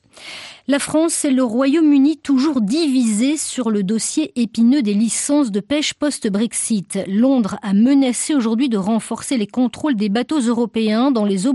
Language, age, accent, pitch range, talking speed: French, 40-59, French, 215-285 Hz, 155 wpm